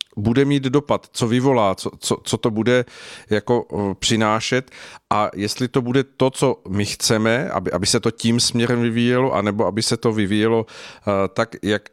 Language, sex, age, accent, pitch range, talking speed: Czech, male, 50-69, native, 105-125 Hz, 170 wpm